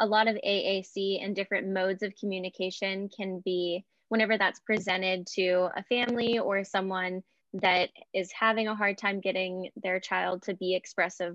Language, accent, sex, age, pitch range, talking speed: English, American, female, 10-29, 185-215 Hz, 165 wpm